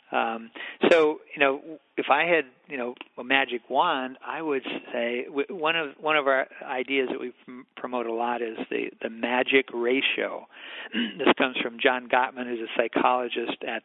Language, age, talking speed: English, 50-69, 175 wpm